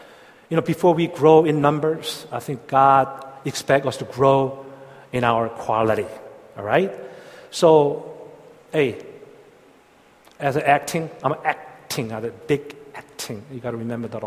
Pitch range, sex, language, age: 125-165 Hz, male, Korean, 40-59